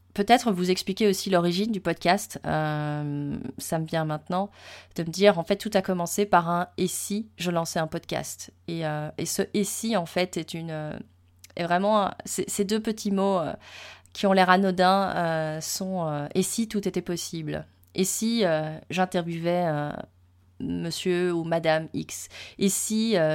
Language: French